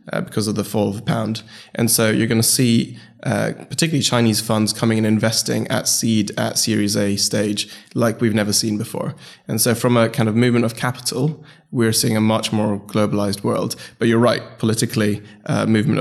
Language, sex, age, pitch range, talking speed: English, male, 20-39, 100-115 Hz, 205 wpm